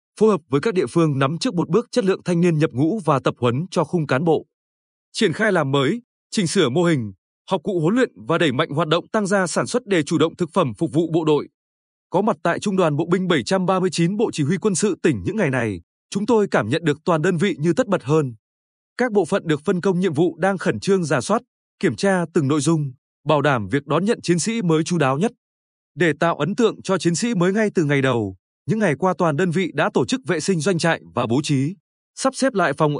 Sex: male